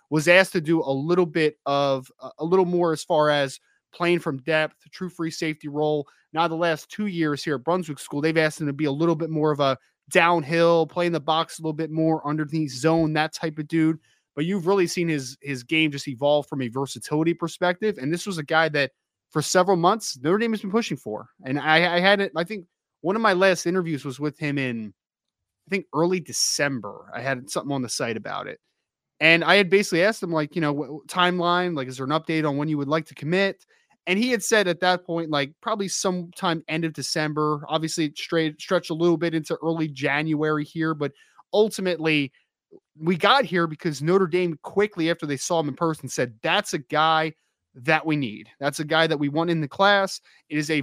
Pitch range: 150-175 Hz